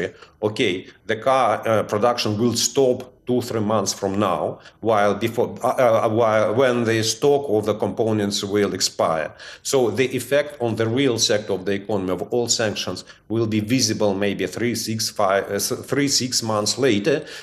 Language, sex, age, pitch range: English, male, 40-59, 100-125 Hz